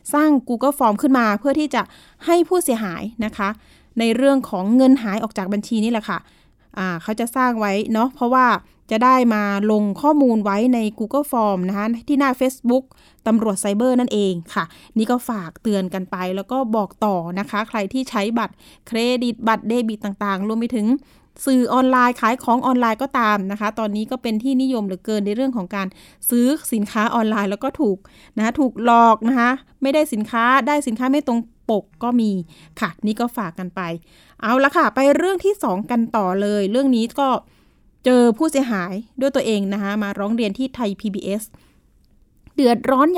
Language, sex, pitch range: Thai, female, 205-255 Hz